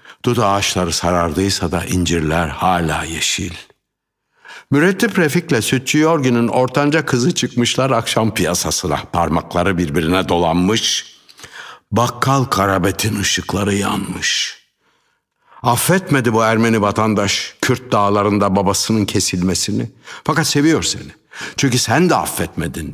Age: 60-79